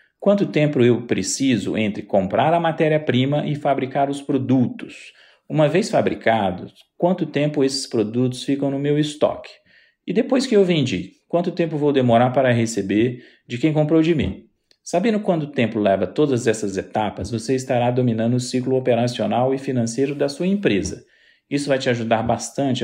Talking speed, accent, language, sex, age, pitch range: 165 wpm, Brazilian, English, male, 40-59, 120-155 Hz